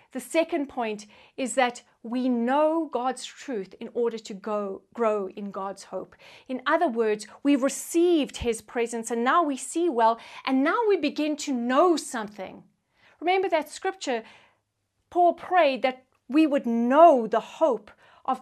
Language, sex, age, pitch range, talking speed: English, female, 40-59, 225-300 Hz, 155 wpm